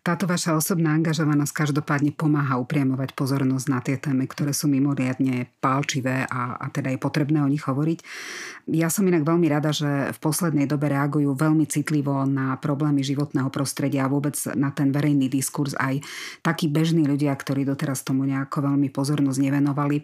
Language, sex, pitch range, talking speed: Slovak, female, 140-155 Hz, 170 wpm